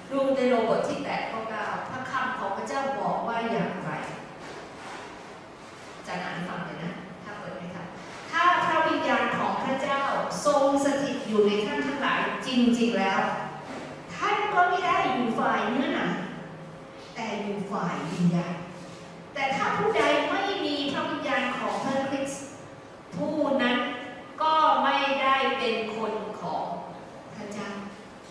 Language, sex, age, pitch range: English, female, 30-49, 210-275 Hz